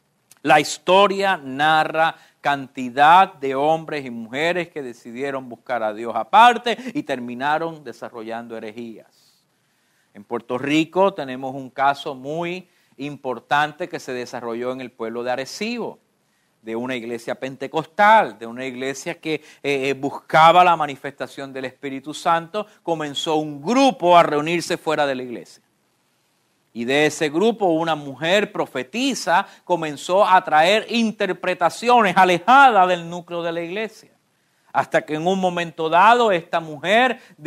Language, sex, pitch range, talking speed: English, male, 135-185 Hz, 135 wpm